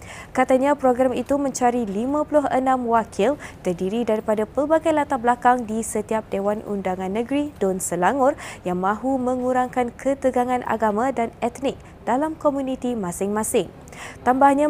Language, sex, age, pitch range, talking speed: Malay, female, 20-39, 225-270 Hz, 120 wpm